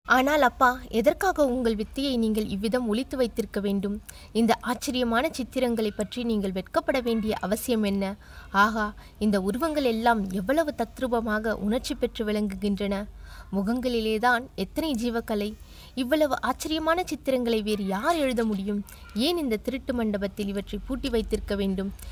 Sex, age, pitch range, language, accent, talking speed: female, 20-39, 200-235 Hz, Tamil, native, 125 wpm